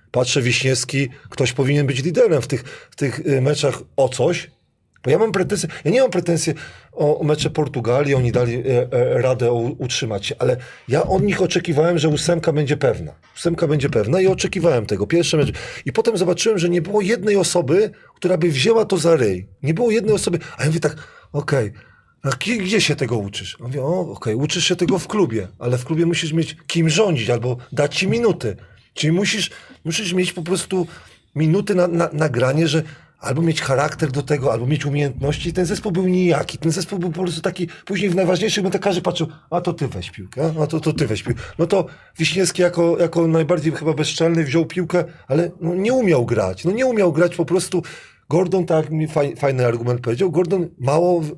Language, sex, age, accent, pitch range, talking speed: Polish, male, 30-49, native, 135-180 Hz, 200 wpm